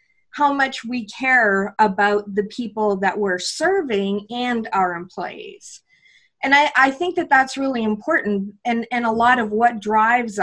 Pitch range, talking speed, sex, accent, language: 215-280 Hz, 160 wpm, female, American, English